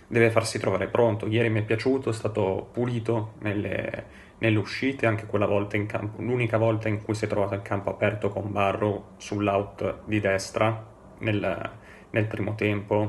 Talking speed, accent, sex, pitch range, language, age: 175 wpm, native, male, 100-115 Hz, Italian, 20-39